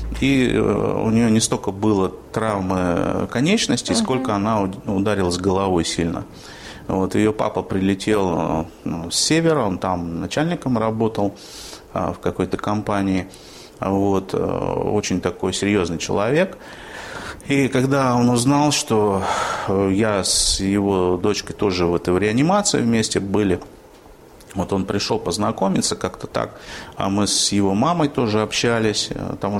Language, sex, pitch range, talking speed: Russian, male, 95-125 Hz, 115 wpm